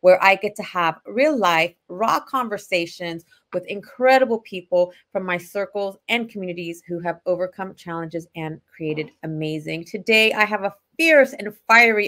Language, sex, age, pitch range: English, female, 30-49, 180-235 Hz